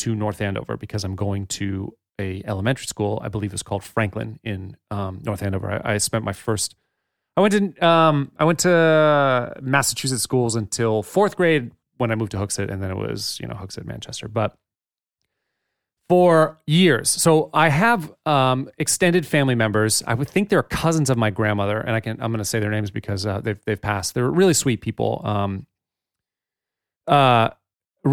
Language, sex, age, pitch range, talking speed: English, male, 30-49, 105-145 Hz, 190 wpm